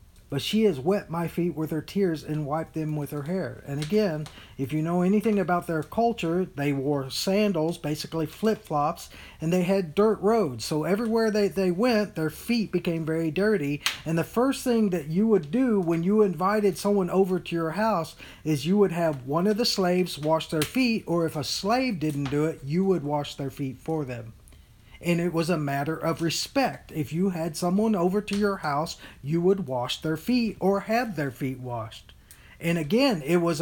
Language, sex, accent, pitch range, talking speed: English, male, American, 150-195 Hz, 205 wpm